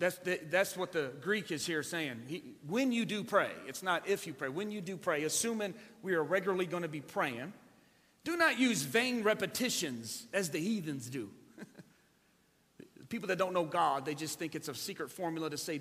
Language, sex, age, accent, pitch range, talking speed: English, male, 40-59, American, 145-190 Hz, 195 wpm